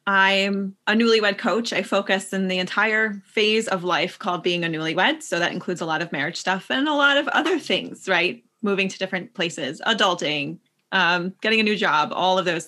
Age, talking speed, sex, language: 20-39, 210 wpm, female, English